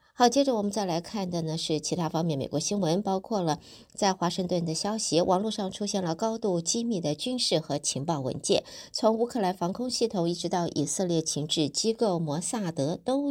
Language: Chinese